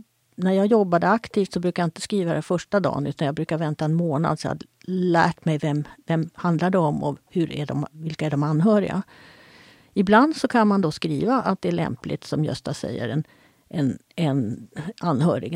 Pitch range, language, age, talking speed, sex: 155-205 Hz, Swedish, 50-69, 200 wpm, female